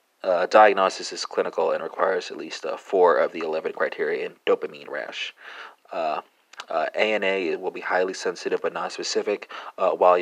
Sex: male